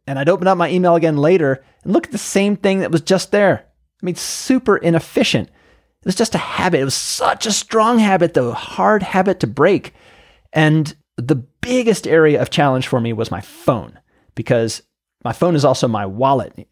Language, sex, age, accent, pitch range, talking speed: English, male, 30-49, American, 125-175 Hz, 200 wpm